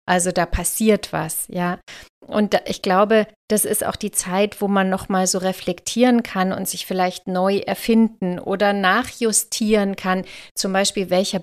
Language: German